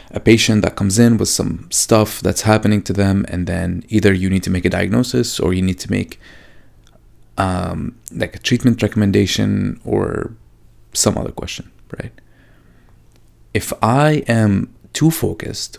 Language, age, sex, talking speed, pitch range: English, 30-49, male, 155 wpm, 100-120 Hz